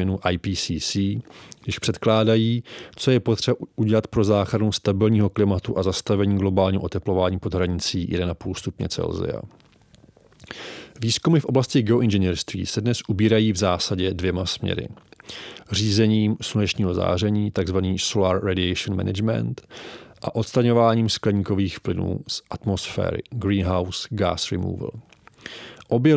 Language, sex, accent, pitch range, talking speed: English, male, Czech, 95-110 Hz, 110 wpm